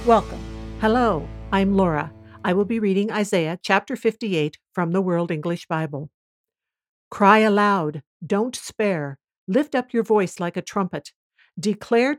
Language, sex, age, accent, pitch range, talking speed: English, female, 60-79, American, 175-215 Hz, 140 wpm